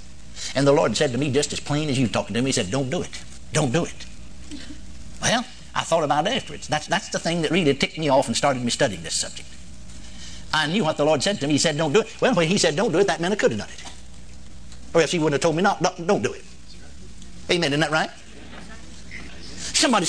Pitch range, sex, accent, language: 120-190 Hz, male, American, English